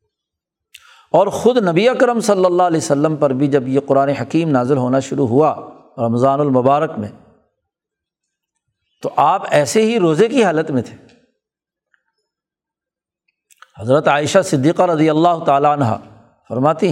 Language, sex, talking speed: Urdu, male, 135 wpm